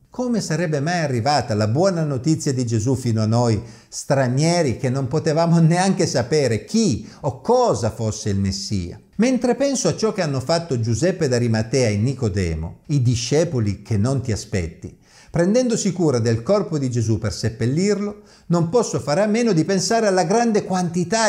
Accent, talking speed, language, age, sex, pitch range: native, 165 wpm, Italian, 50-69, male, 115-185 Hz